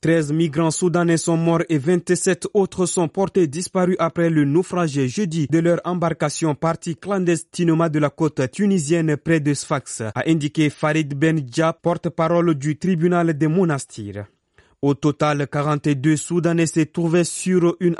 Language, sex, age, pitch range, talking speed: French, male, 30-49, 155-180 Hz, 145 wpm